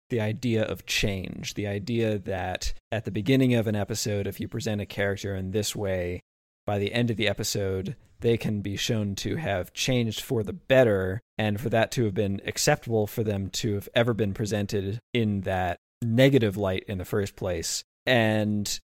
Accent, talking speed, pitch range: American, 190 wpm, 105-125 Hz